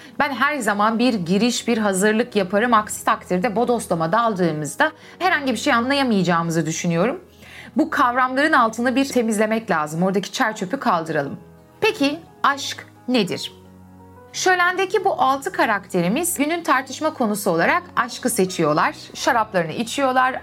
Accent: native